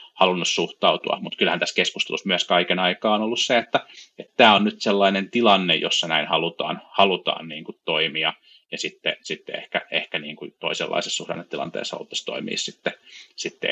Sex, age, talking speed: male, 30-49, 170 wpm